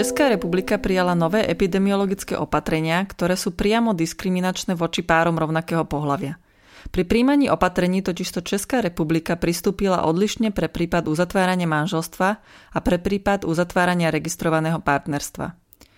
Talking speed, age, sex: 120 wpm, 30-49, female